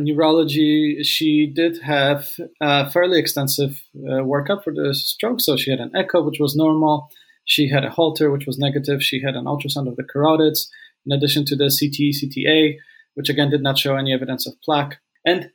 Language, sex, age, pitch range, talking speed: English, male, 20-39, 140-165 Hz, 195 wpm